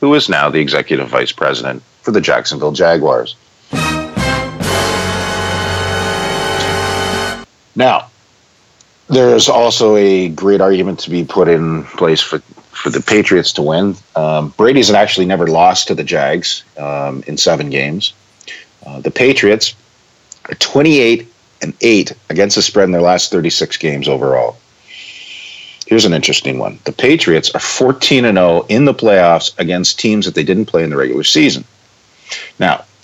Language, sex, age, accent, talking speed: English, male, 50-69, American, 140 wpm